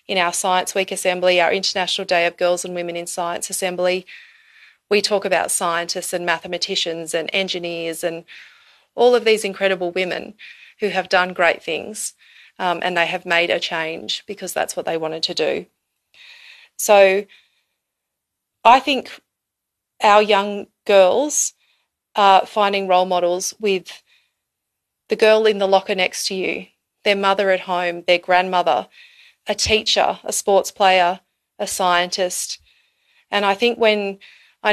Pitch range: 180-215 Hz